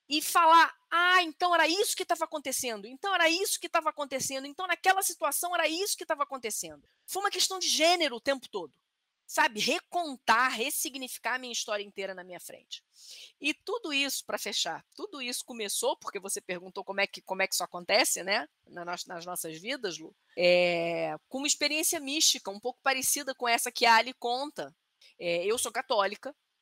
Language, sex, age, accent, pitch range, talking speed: Portuguese, female, 20-39, Brazilian, 200-285 Hz, 180 wpm